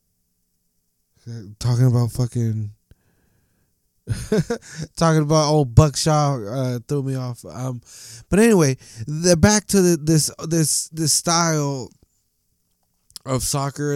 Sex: male